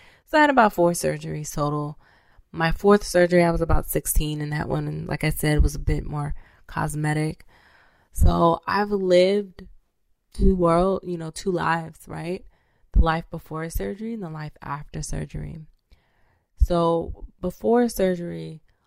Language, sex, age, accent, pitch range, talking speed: English, female, 20-39, American, 150-170 Hz, 150 wpm